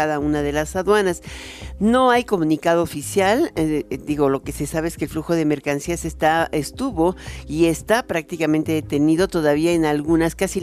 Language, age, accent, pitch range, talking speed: Spanish, 50-69, Mexican, 150-170 Hz, 175 wpm